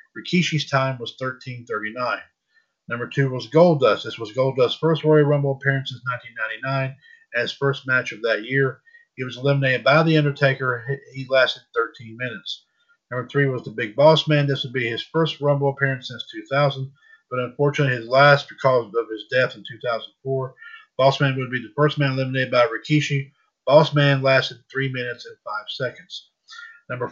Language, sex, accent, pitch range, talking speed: English, male, American, 125-150 Hz, 175 wpm